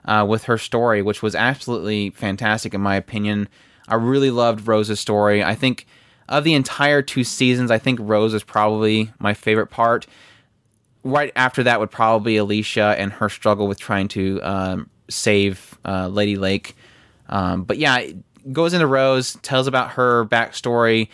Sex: male